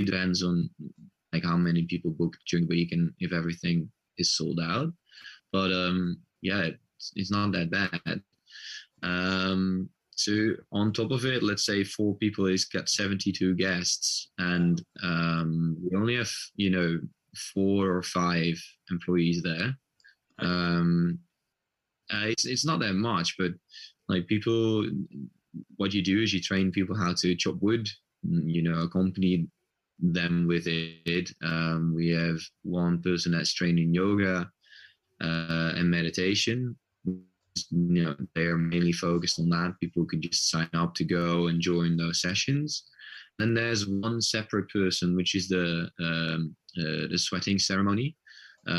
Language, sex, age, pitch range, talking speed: English, male, 20-39, 85-100 Hz, 150 wpm